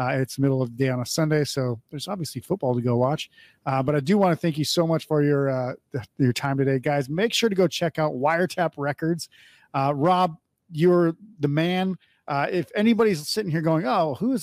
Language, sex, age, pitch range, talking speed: English, male, 40-59, 140-180 Hz, 235 wpm